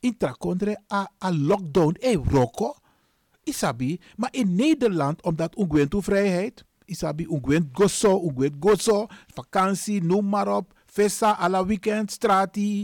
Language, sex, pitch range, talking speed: Dutch, male, 155-215 Hz, 135 wpm